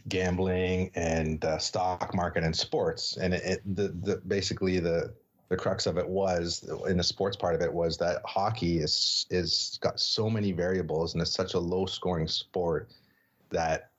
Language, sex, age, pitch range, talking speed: English, male, 30-49, 85-100 Hz, 180 wpm